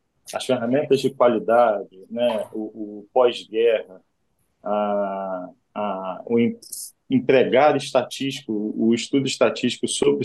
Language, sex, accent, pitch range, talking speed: Portuguese, male, Brazilian, 110-150 Hz, 105 wpm